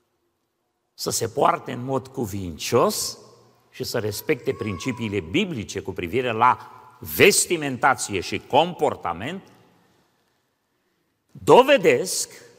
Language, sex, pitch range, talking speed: Romanian, male, 110-150 Hz, 85 wpm